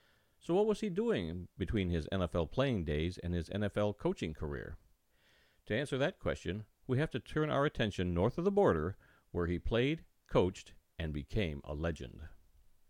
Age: 50-69